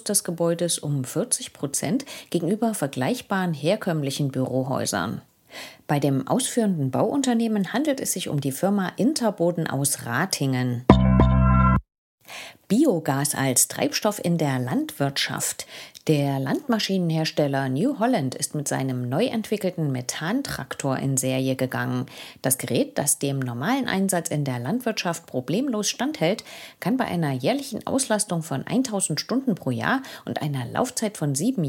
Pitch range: 135-220 Hz